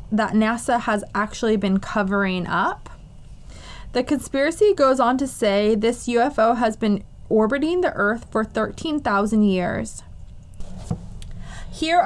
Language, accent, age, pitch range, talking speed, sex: English, American, 20-39, 205-280 Hz, 120 wpm, female